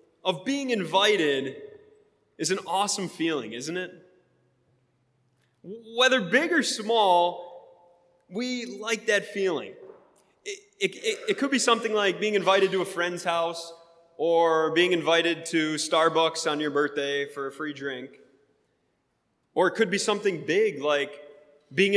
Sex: male